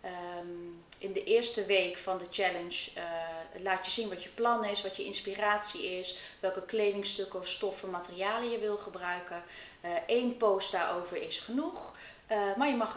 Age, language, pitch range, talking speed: 30-49, Dutch, 170-210 Hz, 165 wpm